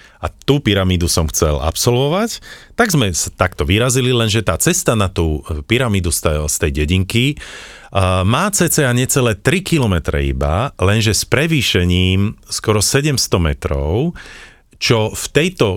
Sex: male